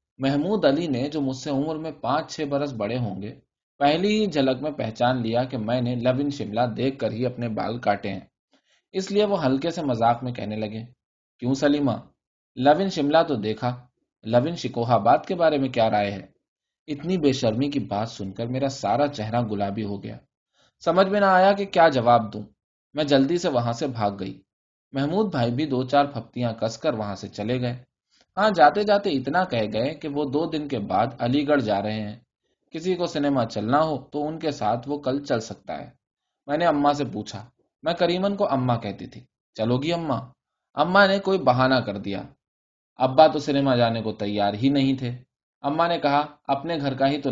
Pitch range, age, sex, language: 115-150 Hz, 20-39, male, Urdu